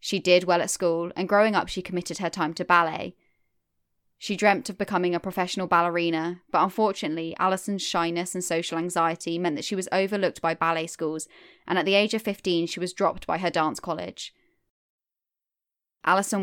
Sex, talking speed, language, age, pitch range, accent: female, 185 wpm, English, 10-29, 165-195 Hz, British